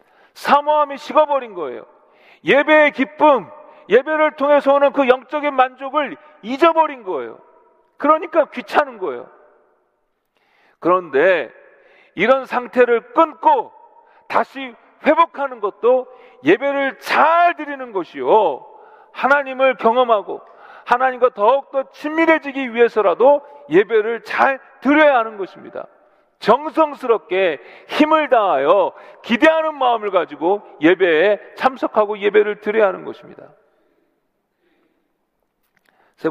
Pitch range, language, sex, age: 210-300 Hz, Korean, male, 40-59